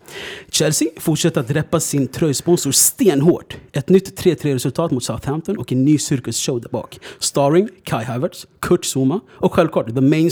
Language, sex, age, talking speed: Swedish, male, 30-49, 155 wpm